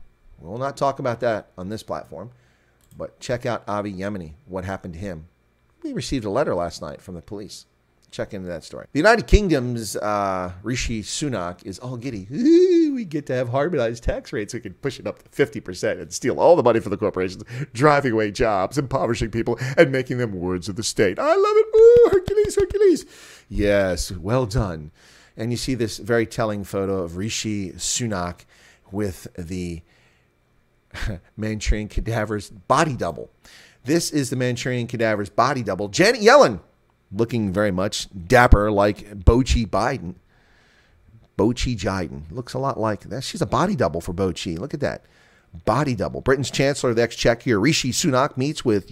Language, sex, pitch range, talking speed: English, male, 95-130 Hz, 175 wpm